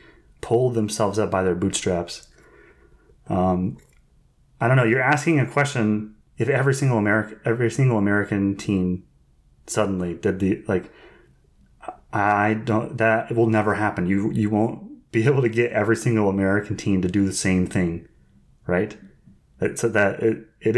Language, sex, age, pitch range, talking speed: English, male, 30-49, 100-130 Hz, 160 wpm